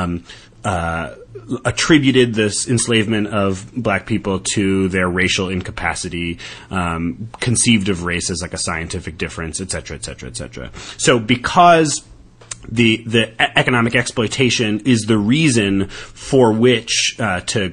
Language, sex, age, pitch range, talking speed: English, male, 30-49, 90-120 Hz, 135 wpm